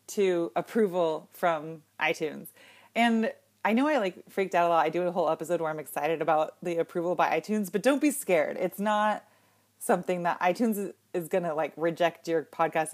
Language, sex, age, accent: English, female, 30-49, American